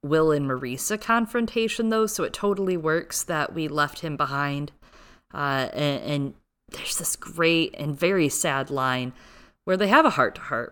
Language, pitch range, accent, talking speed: English, 140-180 Hz, American, 175 wpm